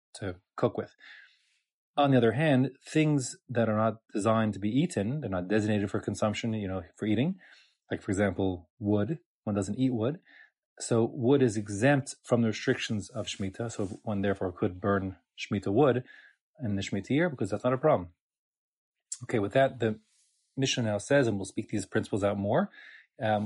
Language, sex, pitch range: English, male, 105-130 Hz